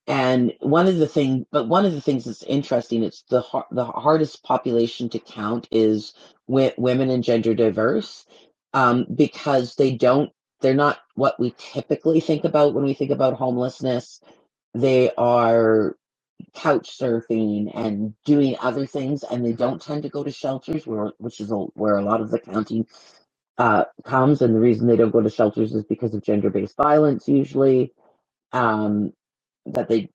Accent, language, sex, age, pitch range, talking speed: American, English, female, 40-59, 115-135 Hz, 175 wpm